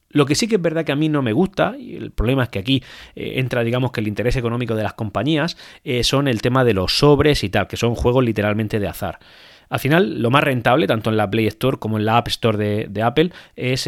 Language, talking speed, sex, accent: Spanish, 270 wpm, male, Spanish